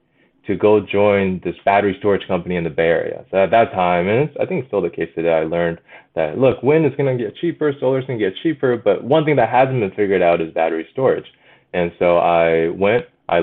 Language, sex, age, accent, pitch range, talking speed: English, male, 20-39, American, 85-105 Hz, 245 wpm